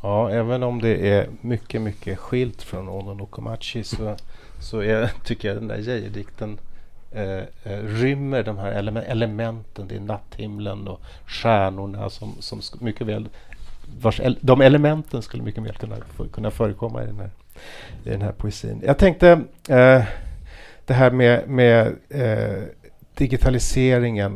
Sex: male